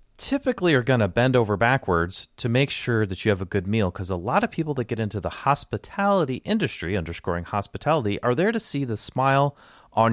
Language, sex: English, male